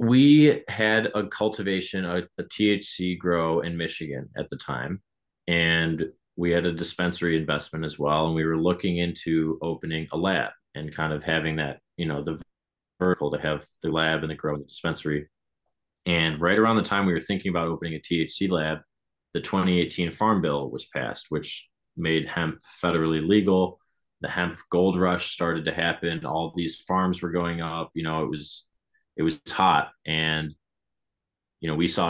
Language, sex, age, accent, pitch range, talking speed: English, male, 30-49, American, 80-90 Hz, 180 wpm